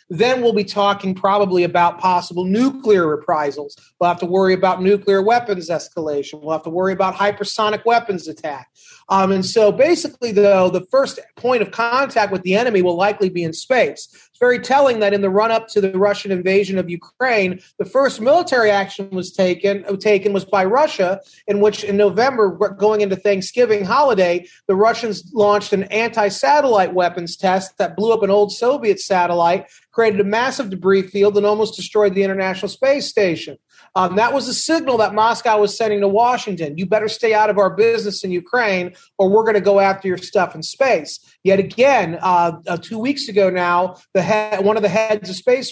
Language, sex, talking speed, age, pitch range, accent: English, male, 195 wpm, 30-49, 185-220 Hz, American